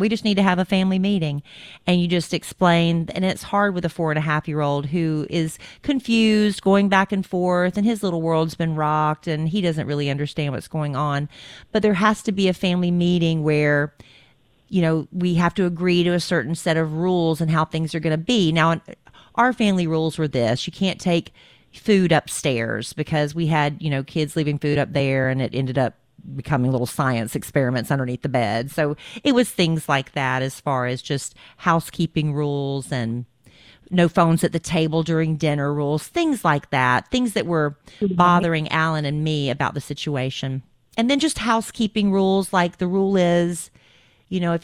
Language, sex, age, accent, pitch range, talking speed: English, female, 40-59, American, 145-195 Hz, 200 wpm